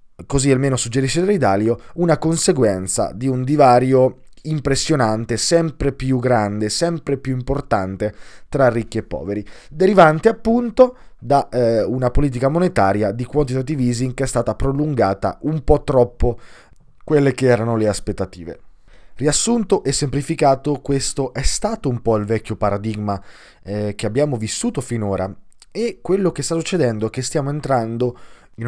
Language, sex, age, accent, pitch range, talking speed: Italian, male, 20-39, native, 105-150 Hz, 140 wpm